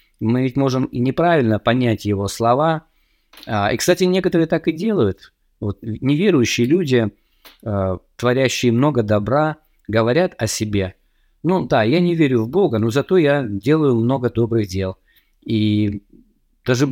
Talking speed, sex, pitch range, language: 140 wpm, male, 110-145 Hz, Russian